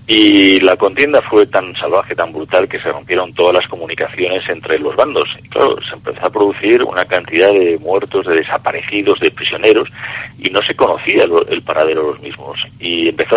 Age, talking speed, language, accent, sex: 40-59, 190 wpm, Spanish, Spanish, male